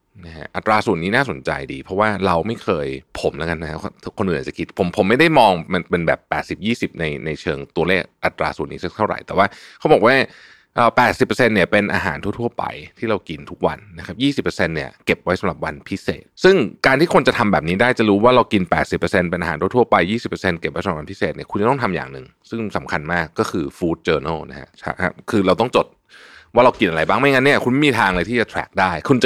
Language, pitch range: Thai, 85-115 Hz